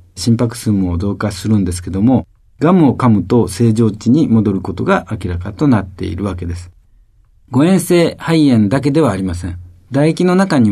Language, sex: Japanese, male